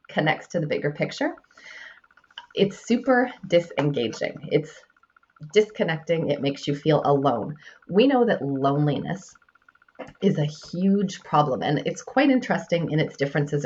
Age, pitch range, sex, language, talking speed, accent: 30-49, 145-215 Hz, female, English, 130 wpm, American